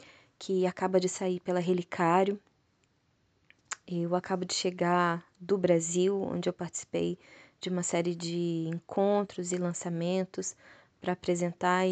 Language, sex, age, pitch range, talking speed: Portuguese, female, 20-39, 170-195 Hz, 120 wpm